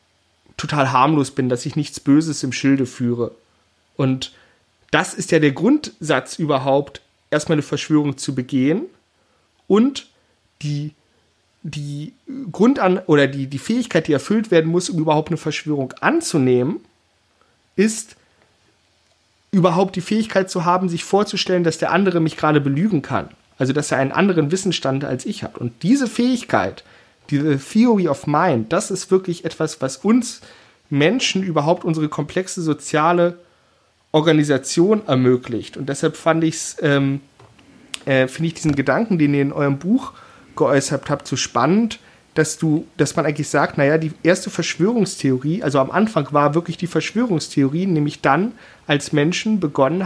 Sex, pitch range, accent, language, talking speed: male, 140-185 Hz, German, German, 145 wpm